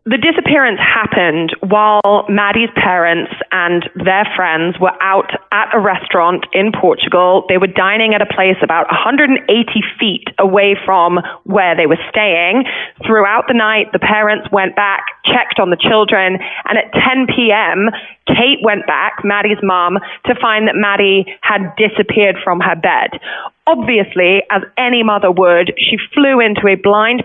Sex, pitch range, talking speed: female, 195-245 Hz, 155 wpm